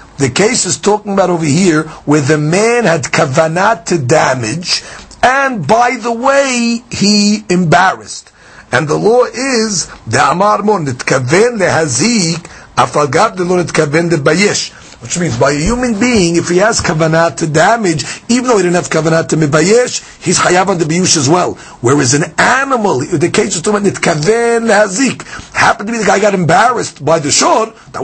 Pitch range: 155-210 Hz